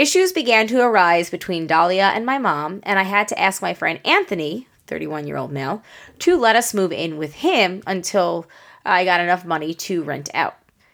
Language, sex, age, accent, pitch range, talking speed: English, female, 30-49, American, 175-240 Hz, 185 wpm